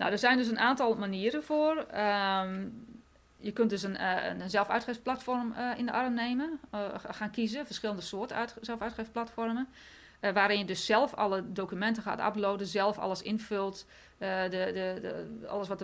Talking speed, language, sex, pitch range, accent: 145 wpm, Dutch, female, 190-230 Hz, Dutch